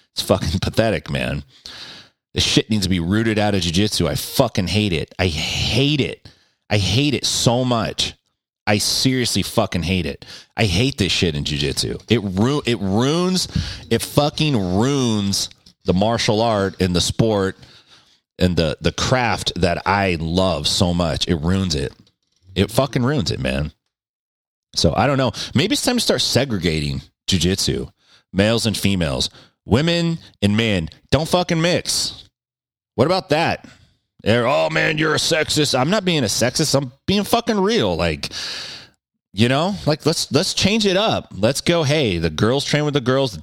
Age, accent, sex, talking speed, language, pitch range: 30-49, American, male, 170 wpm, English, 95-140 Hz